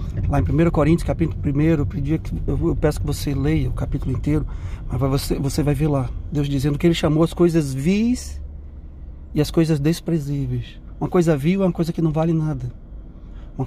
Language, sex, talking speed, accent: Portuguese, male, 205 wpm, Brazilian